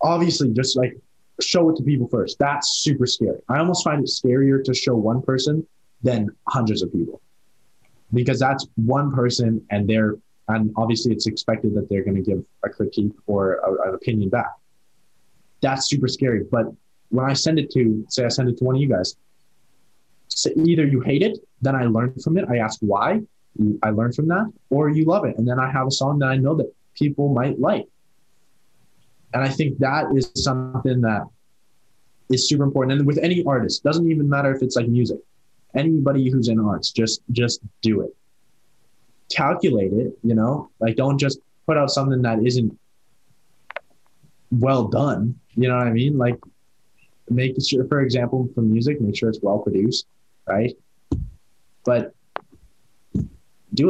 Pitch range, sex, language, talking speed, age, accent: 115-140 Hz, male, English, 180 wpm, 20-39, American